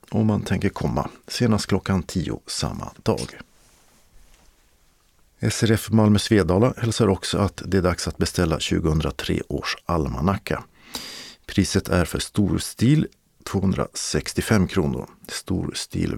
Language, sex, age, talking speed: Swedish, male, 50-69, 110 wpm